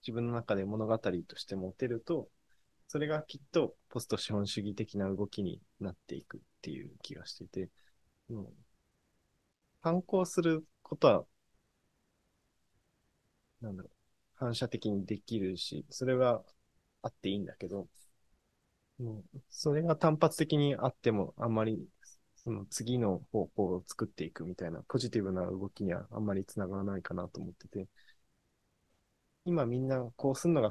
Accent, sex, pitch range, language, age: native, male, 100-130 Hz, Japanese, 20-39